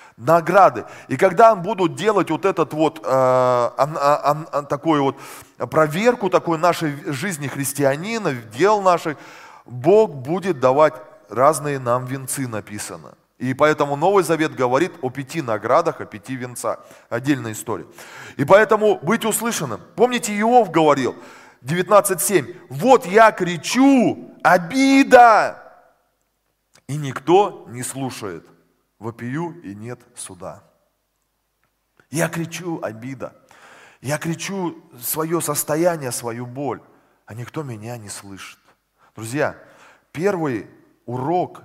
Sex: male